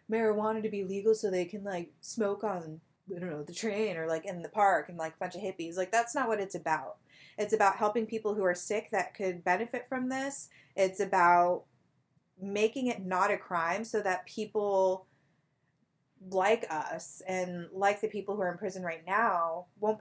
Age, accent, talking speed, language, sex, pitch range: 20-39, American, 200 wpm, English, female, 165-205 Hz